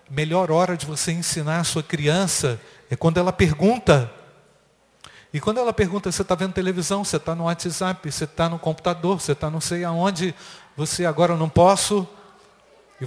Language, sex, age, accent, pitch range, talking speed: Portuguese, male, 40-59, Brazilian, 155-200 Hz, 180 wpm